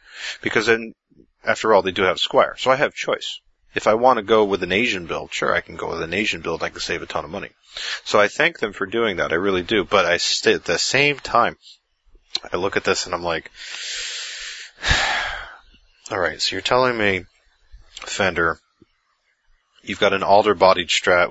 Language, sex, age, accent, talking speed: English, male, 30-49, American, 205 wpm